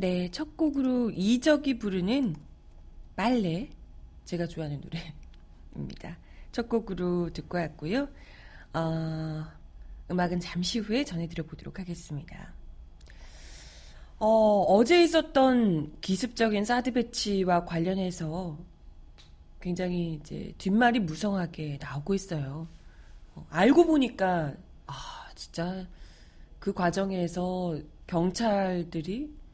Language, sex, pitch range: Korean, female, 160-225 Hz